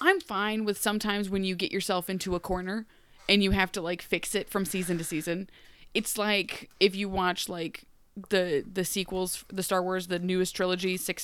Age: 20-39